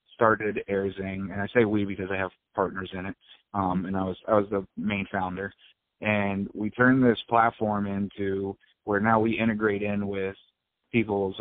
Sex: male